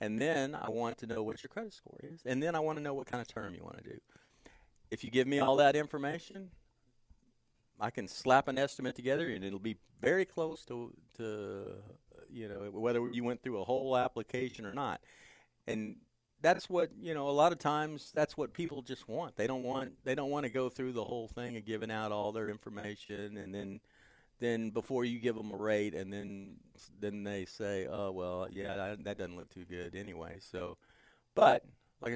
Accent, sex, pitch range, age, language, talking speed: American, male, 105-140 Hz, 40-59, English, 215 wpm